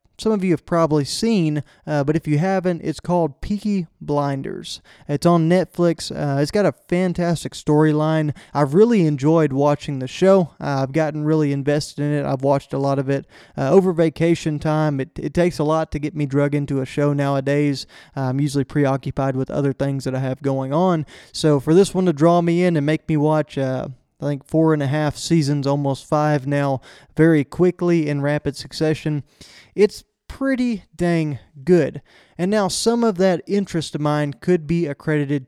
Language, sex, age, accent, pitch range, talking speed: English, male, 20-39, American, 140-170 Hz, 195 wpm